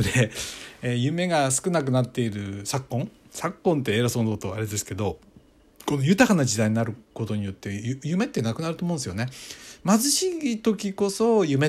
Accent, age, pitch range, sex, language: native, 60-79, 110-160 Hz, male, Japanese